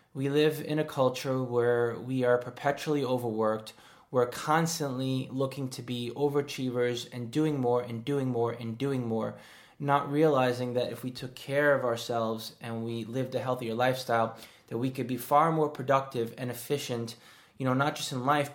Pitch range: 120-150 Hz